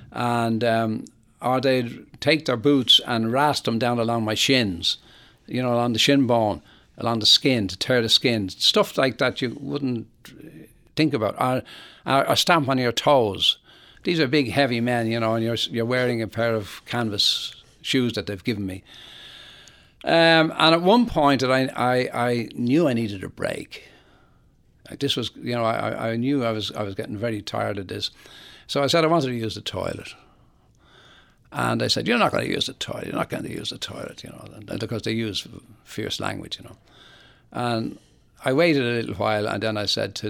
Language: English